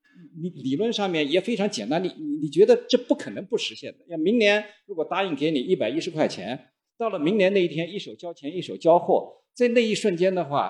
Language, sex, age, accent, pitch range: Chinese, male, 50-69, native, 130-220 Hz